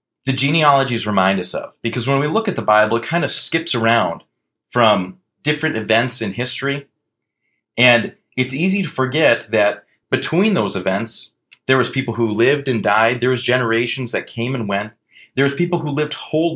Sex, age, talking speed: male, 30-49, 185 wpm